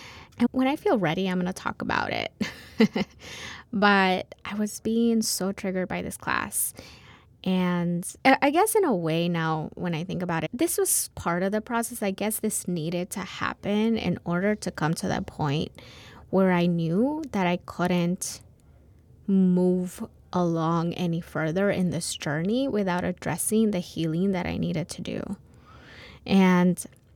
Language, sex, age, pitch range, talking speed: English, female, 20-39, 175-215 Hz, 165 wpm